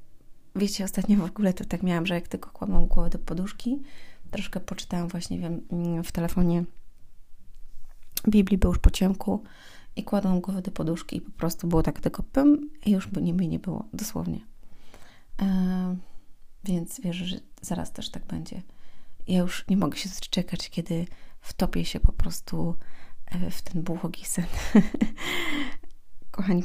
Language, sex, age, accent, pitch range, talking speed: Polish, female, 30-49, native, 170-195 Hz, 150 wpm